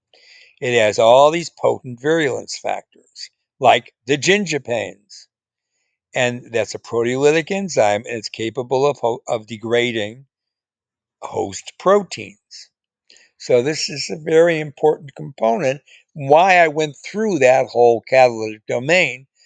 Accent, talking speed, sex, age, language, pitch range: American, 120 wpm, male, 60-79, English, 115-150 Hz